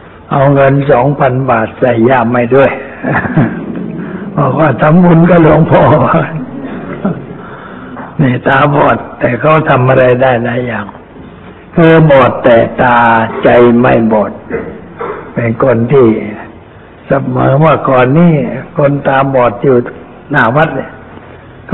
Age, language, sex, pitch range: 60-79, Thai, male, 120-150 Hz